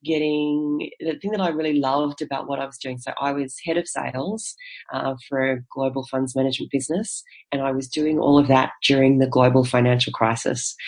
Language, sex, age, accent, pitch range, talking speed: English, female, 30-49, Australian, 125-135 Hz, 205 wpm